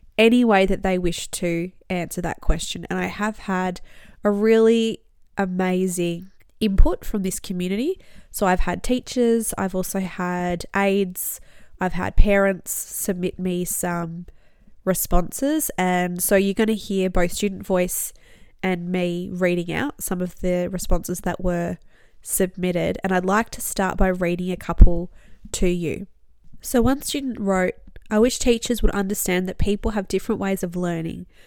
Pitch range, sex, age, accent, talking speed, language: 180-205 Hz, female, 20-39, Australian, 155 wpm, English